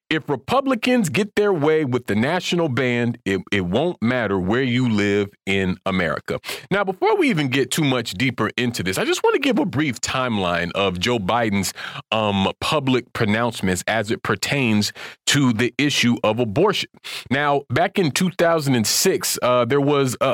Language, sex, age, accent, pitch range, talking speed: English, male, 40-59, American, 110-160 Hz, 170 wpm